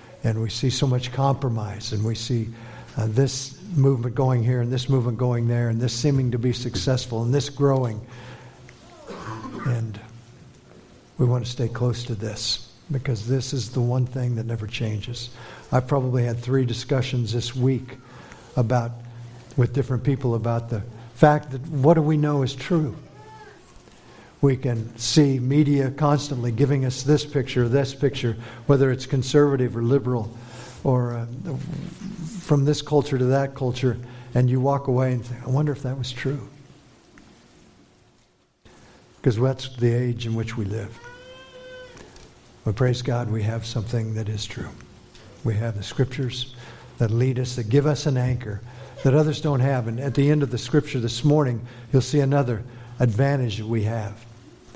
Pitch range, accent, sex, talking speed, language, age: 120-135 Hz, American, male, 165 wpm, English, 60-79